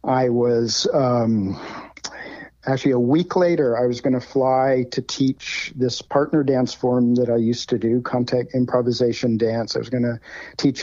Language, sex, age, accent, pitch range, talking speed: English, male, 50-69, American, 115-135 Hz, 170 wpm